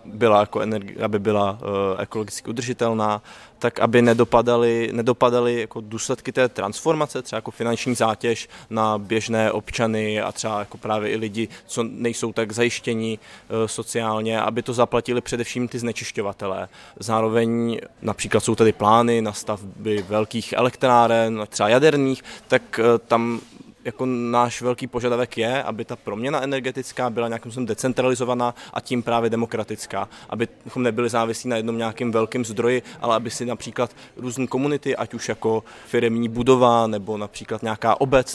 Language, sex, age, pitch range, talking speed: Czech, male, 20-39, 110-120 Hz, 145 wpm